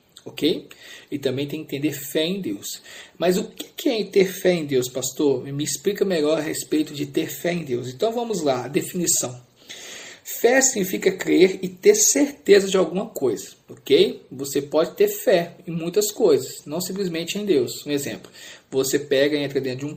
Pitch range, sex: 140-200 Hz, male